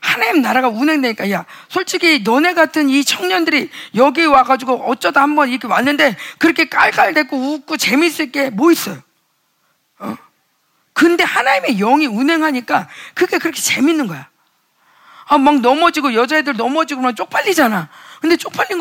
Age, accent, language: 40-59, native, Korean